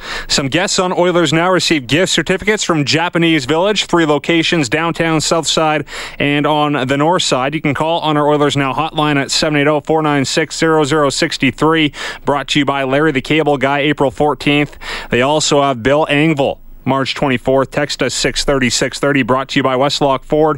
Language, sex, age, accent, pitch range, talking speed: English, male, 30-49, American, 140-165 Hz, 175 wpm